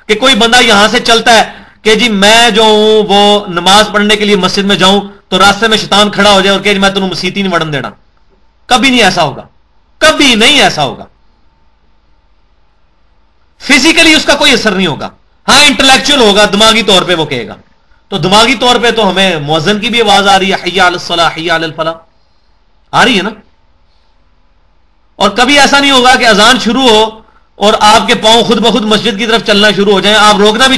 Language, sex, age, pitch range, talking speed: Urdu, male, 40-59, 175-230 Hz, 195 wpm